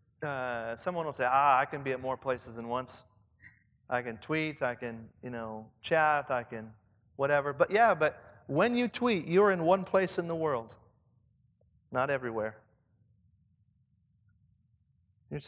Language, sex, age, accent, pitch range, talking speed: English, male, 40-59, American, 115-175 Hz, 155 wpm